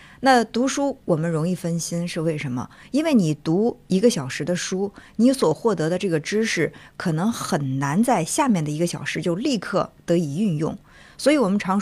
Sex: female